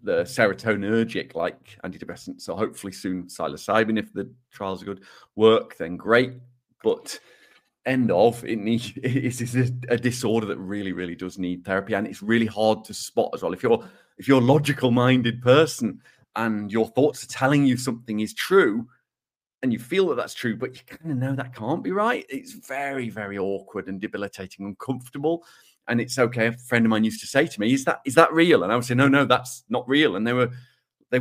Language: English